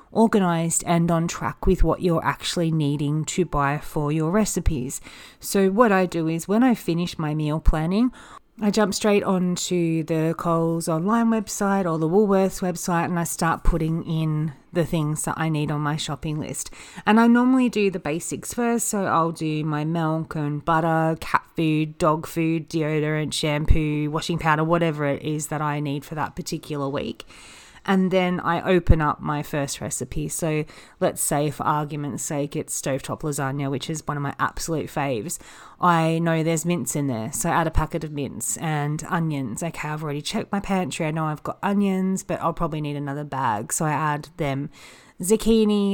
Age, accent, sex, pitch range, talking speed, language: 30-49, Australian, female, 150-185 Hz, 190 wpm, English